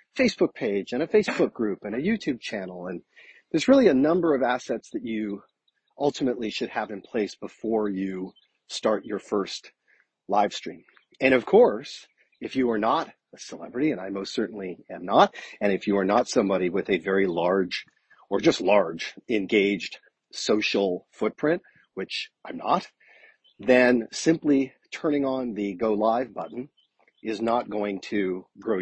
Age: 40-59